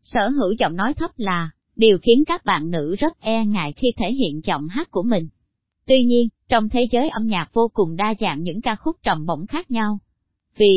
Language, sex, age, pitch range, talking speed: Vietnamese, male, 20-39, 185-245 Hz, 225 wpm